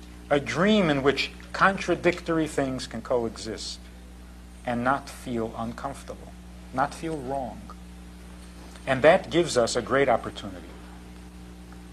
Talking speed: 110 wpm